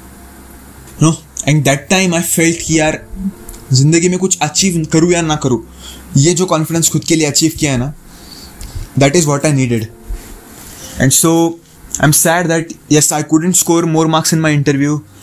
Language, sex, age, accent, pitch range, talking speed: Hindi, male, 20-39, native, 135-170 Hz, 175 wpm